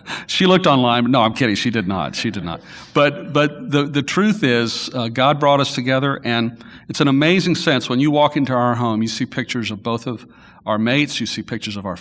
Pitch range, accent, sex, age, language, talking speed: 110-130 Hz, American, male, 50-69, English, 240 wpm